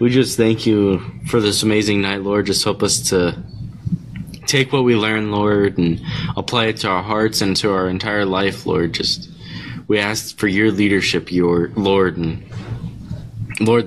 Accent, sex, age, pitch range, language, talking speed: American, male, 20-39, 90-105 Hz, English, 175 wpm